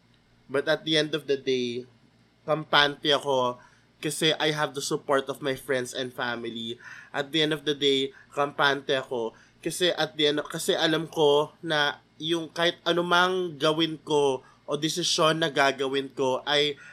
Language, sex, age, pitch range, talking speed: Filipino, male, 20-39, 145-210 Hz, 165 wpm